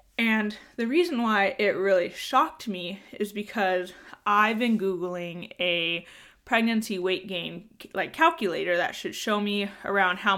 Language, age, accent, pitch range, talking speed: English, 20-39, American, 185-225 Hz, 145 wpm